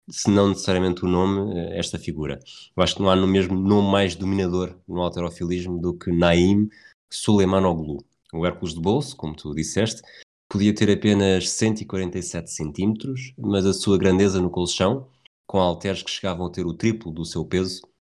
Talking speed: 175 wpm